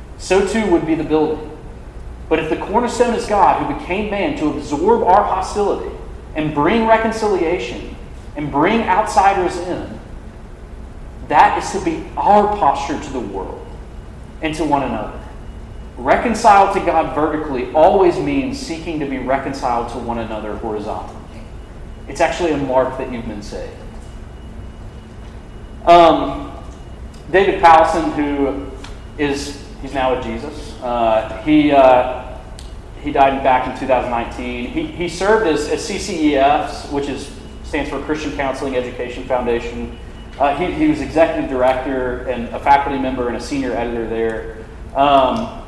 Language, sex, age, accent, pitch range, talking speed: English, male, 40-59, American, 120-165 Hz, 140 wpm